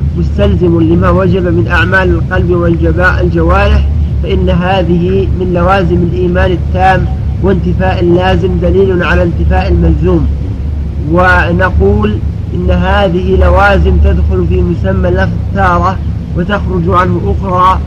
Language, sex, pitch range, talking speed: Arabic, male, 75-90 Hz, 105 wpm